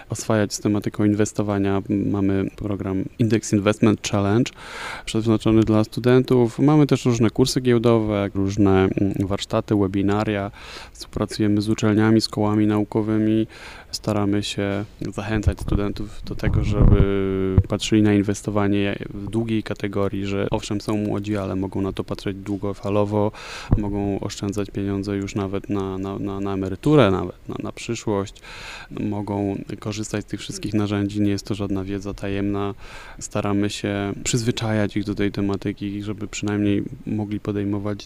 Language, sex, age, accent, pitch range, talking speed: Polish, male, 20-39, native, 100-110 Hz, 135 wpm